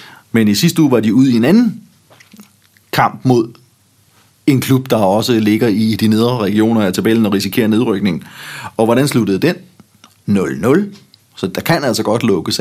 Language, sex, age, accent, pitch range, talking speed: Danish, male, 30-49, native, 110-155 Hz, 175 wpm